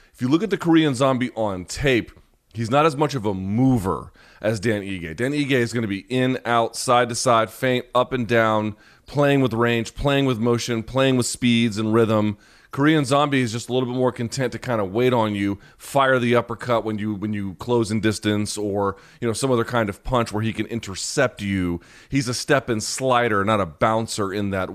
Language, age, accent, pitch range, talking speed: English, 30-49, American, 110-135 Hz, 225 wpm